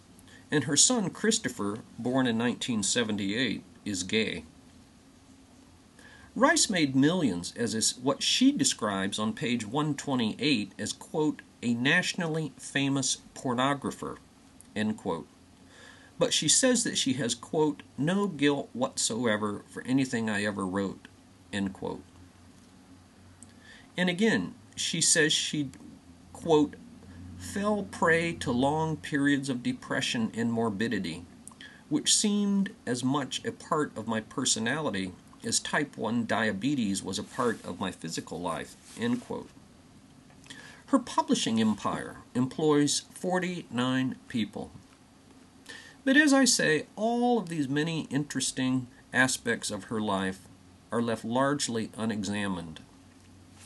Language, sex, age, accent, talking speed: English, male, 50-69, American, 115 wpm